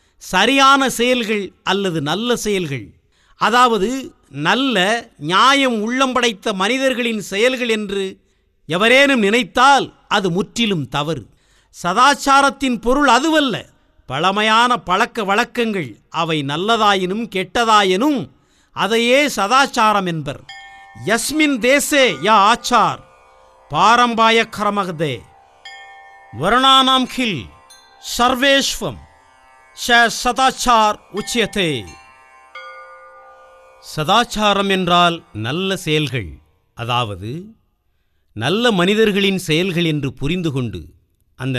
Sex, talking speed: male, 75 wpm